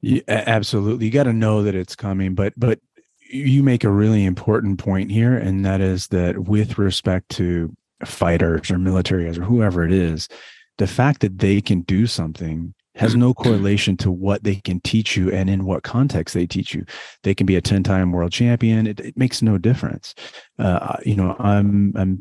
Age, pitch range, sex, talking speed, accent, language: 30-49, 90-110 Hz, male, 195 wpm, American, English